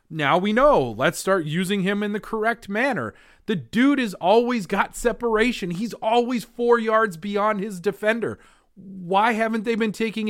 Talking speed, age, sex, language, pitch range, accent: 170 wpm, 30-49, male, English, 145-220 Hz, American